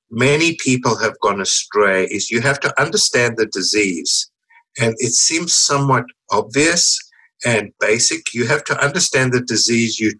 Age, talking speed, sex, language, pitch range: 60-79, 155 wpm, male, English, 120-175 Hz